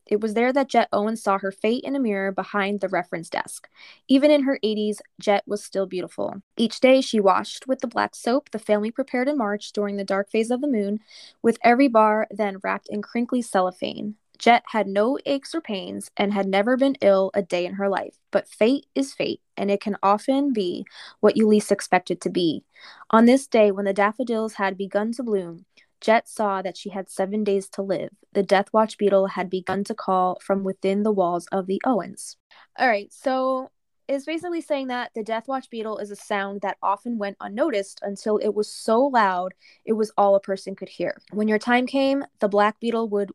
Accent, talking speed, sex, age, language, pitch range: American, 215 wpm, female, 10-29, English, 195-235 Hz